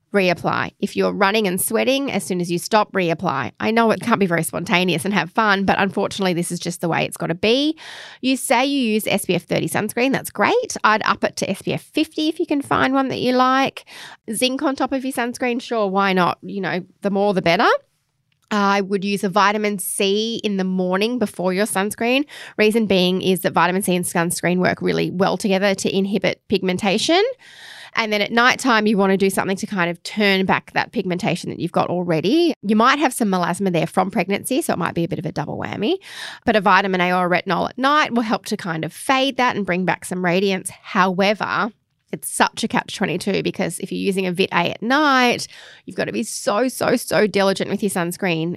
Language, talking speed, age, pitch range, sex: English, 225 wpm, 20-39, 180-220 Hz, female